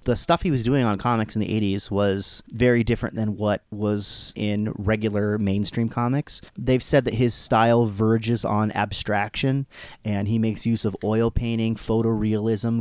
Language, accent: English, American